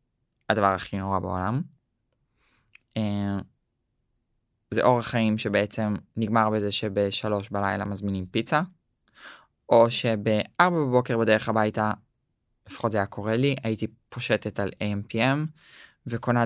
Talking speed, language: 105 wpm, English